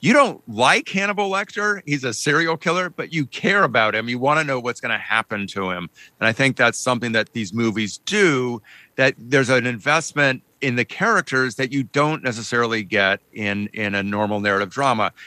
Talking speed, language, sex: 200 wpm, English, male